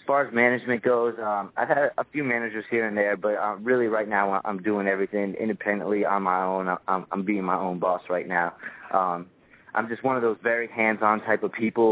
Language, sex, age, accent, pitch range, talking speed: English, male, 20-39, American, 90-110 Hz, 225 wpm